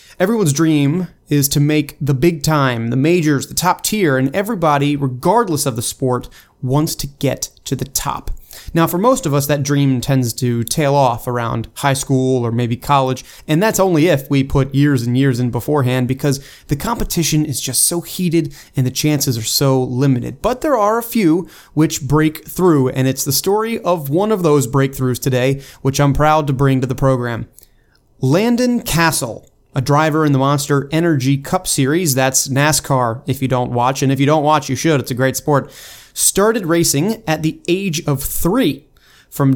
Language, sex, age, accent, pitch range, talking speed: English, male, 30-49, American, 135-165 Hz, 195 wpm